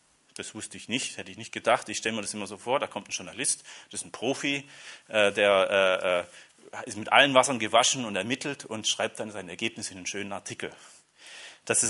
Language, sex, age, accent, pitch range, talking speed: German, male, 30-49, German, 100-120 Hz, 220 wpm